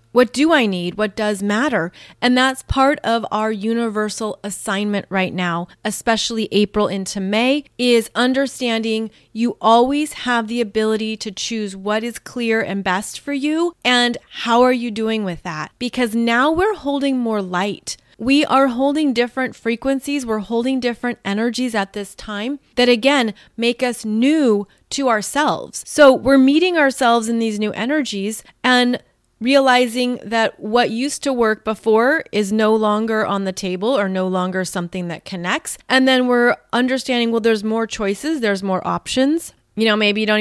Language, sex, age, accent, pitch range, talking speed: English, female, 30-49, American, 200-250 Hz, 165 wpm